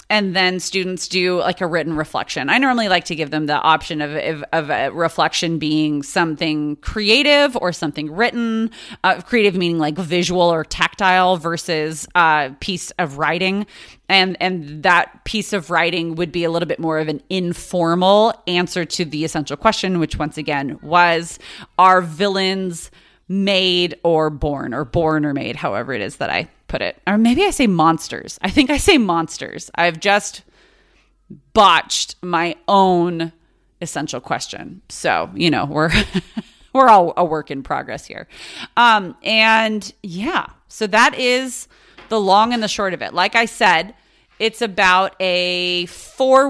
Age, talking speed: 30-49, 165 wpm